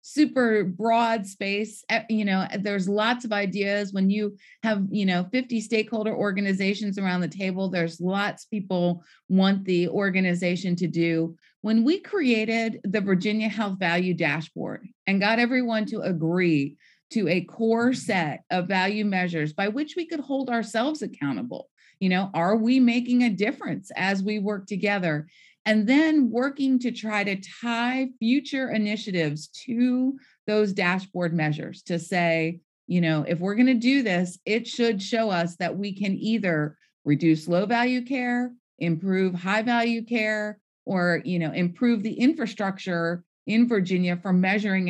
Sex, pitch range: female, 175-225 Hz